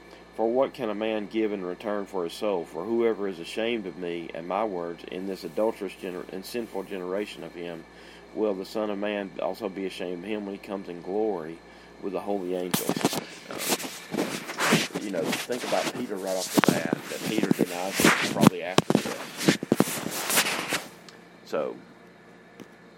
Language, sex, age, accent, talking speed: English, male, 40-59, American, 165 wpm